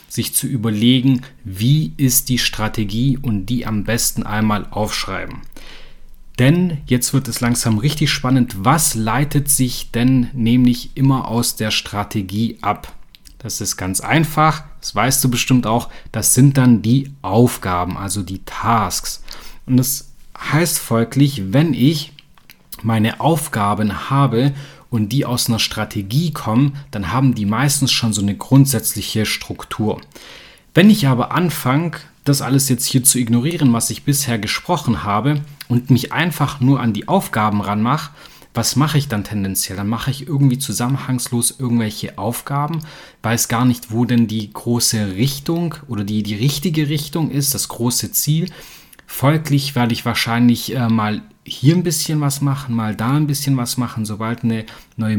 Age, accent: 30-49, German